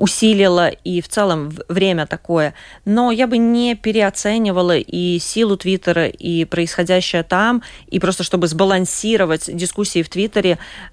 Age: 20-39